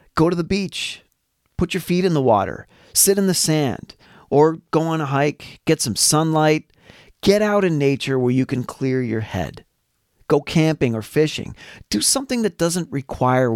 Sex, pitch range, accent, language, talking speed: male, 115-160 Hz, American, English, 180 wpm